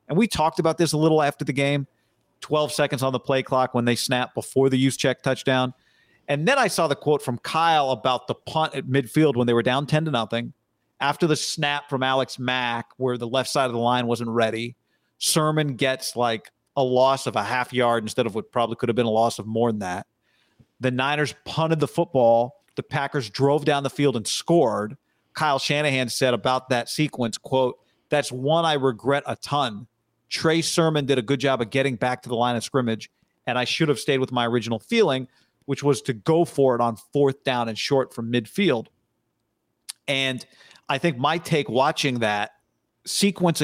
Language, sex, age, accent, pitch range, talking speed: English, male, 40-59, American, 120-145 Hz, 210 wpm